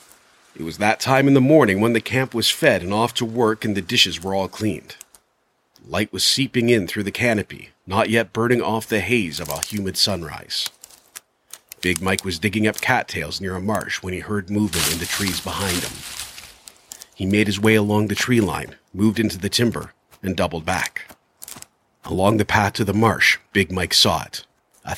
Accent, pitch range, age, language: American, 90-110 Hz, 40-59, English